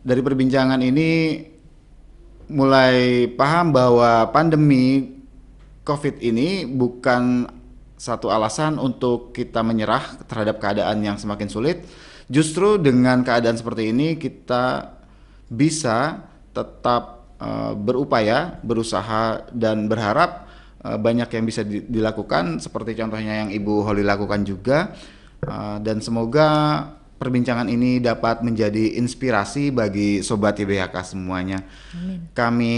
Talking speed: 105 wpm